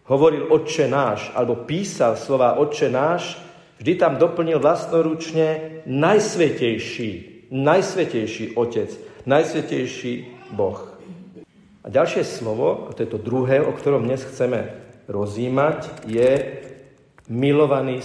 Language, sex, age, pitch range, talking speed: Slovak, male, 50-69, 120-160 Hz, 105 wpm